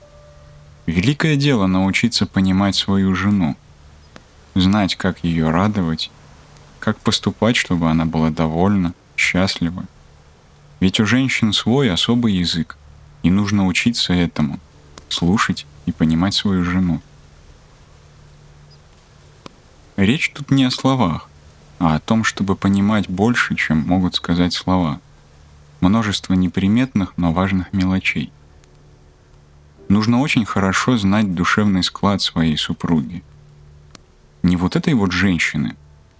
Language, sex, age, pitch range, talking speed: Russian, male, 20-39, 75-100 Hz, 110 wpm